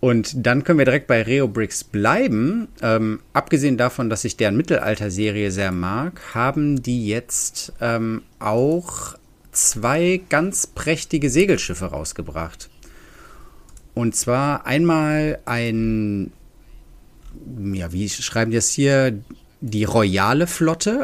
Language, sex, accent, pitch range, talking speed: German, male, German, 100-135 Hz, 115 wpm